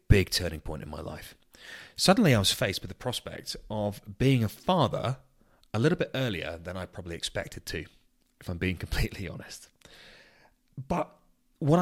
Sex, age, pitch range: male, 30-49, 85-115 Hz